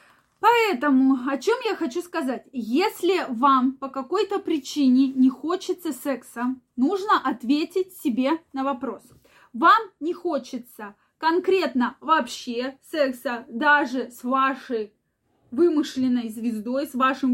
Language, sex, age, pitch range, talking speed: Russian, female, 20-39, 240-310 Hz, 110 wpm